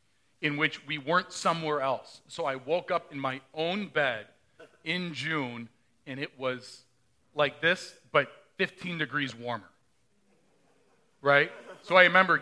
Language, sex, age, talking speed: English, male, 40-59, 140 wpm